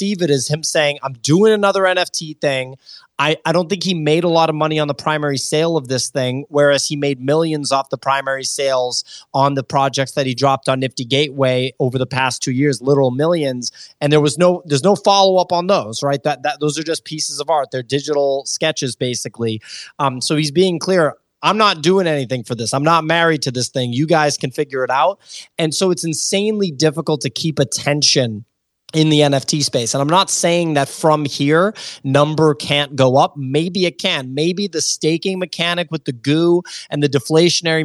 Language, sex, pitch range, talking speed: English, male, 135-165 Hz, 205 wpm